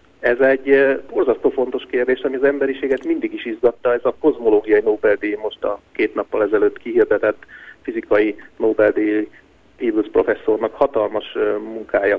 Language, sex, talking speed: Hungarian, male, 130 wpm